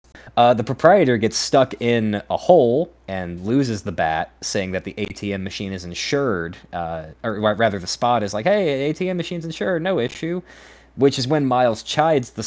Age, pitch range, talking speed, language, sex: 20-39, 90-120 Hz, 185 wpm, English, male